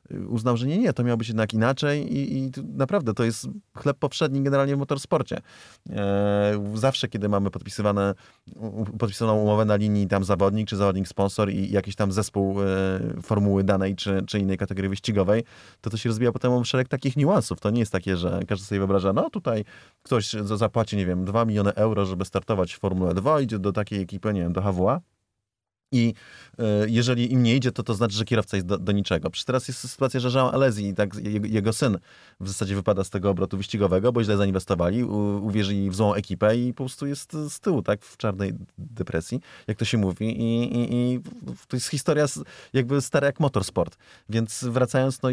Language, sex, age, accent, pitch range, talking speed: Polish, male, 30-49, native, 100-125 Hz, 195 wpm